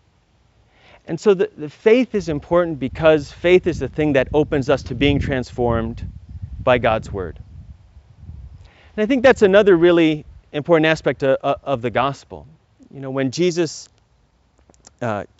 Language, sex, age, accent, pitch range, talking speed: English, male, 30-49, American, 115-170 Hz, 150 wpm